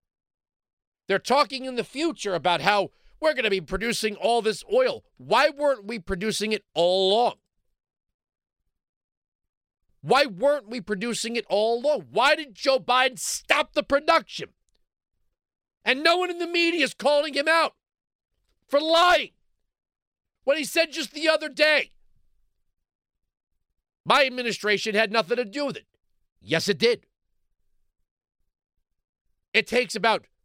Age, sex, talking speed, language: 50-69, male, 135 wpm, English